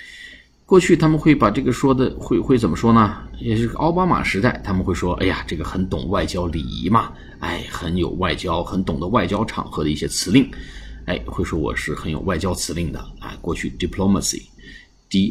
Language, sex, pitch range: Chinese, male, 85-105 Hz